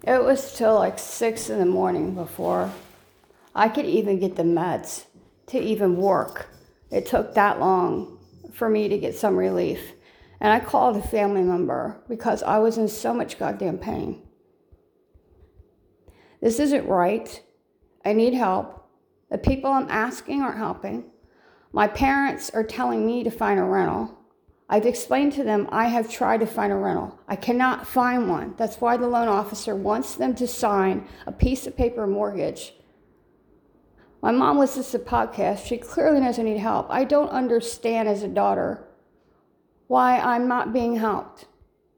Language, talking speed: English, 165 wpm